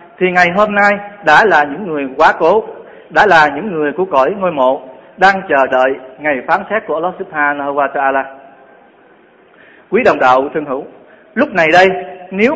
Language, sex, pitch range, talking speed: Vietnamese, male, 160-205 Hz, 180 wpm